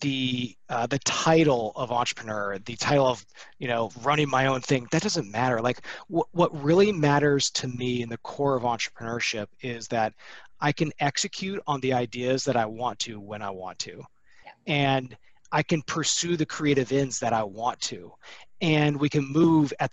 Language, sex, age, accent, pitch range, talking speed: English, male, 30-49, American, 125-170 Hz, 185 wpm